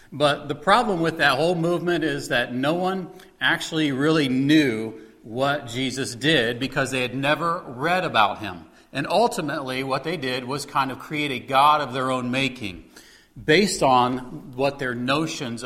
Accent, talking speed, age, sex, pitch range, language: American, 170 wpm, 40-59, male, 135-165 Hz, English